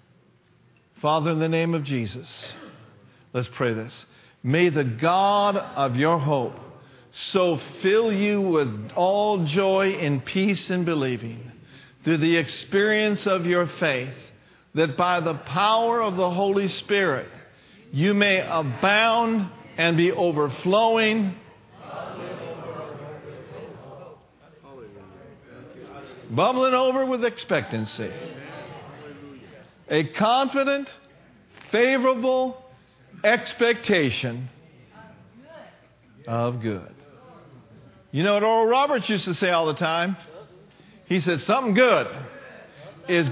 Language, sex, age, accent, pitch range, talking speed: English, male, 50-69, American, 130-195 Hz, 100 wpm